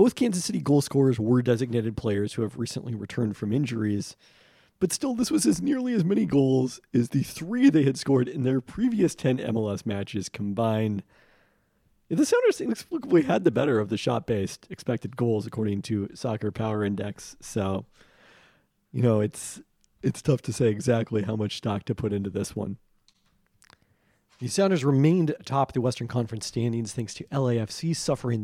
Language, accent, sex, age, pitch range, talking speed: English, American, male, 40-59, 105-140 Hz, 170 wpm